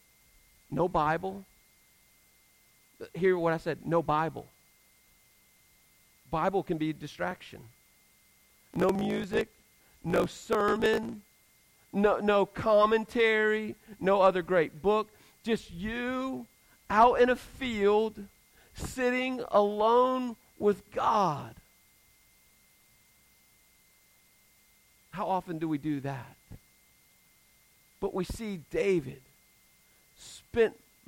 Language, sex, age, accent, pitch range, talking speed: English, male, 50-69, American, 145-205 Hz, 85 wpm